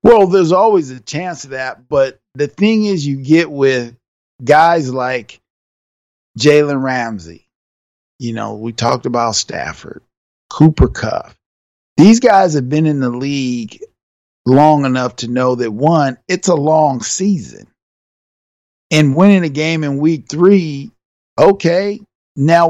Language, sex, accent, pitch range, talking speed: English, male, American, 130-170 Hz, 135 wpm